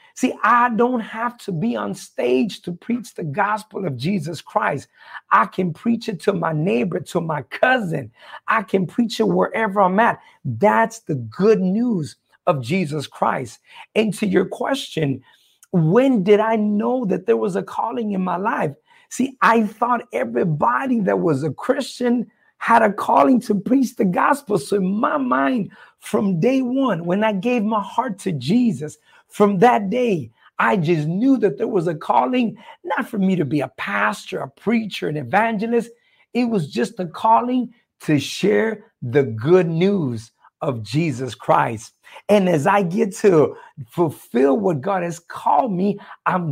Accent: American